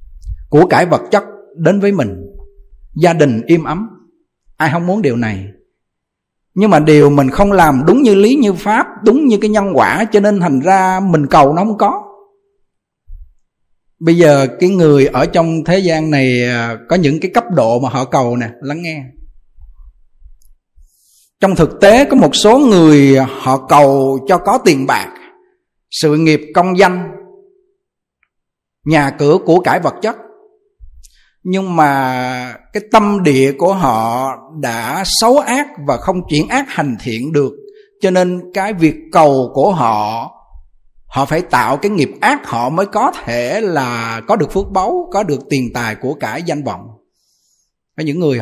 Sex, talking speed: male, 165 wpm